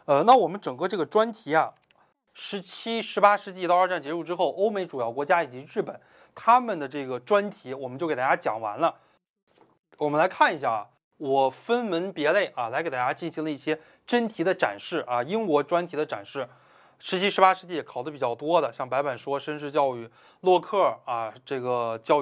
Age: 20-39